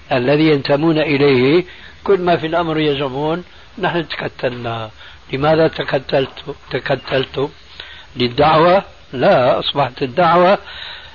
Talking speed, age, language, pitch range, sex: 90 wpm, 60-79, Arabic, 130-165 Hz, male